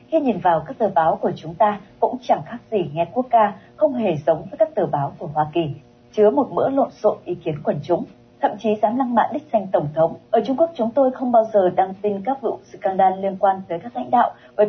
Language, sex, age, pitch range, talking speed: Vietnamese, female, 20-39, 175-230 Hz, 260 wpm